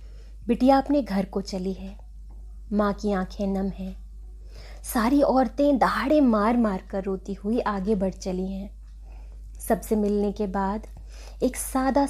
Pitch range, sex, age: 180-220 Hz, female, 20-39